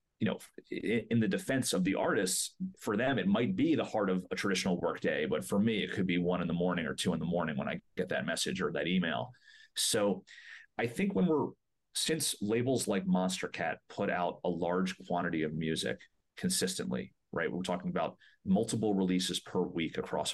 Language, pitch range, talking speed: English, 90-135 Hz, 205 wpm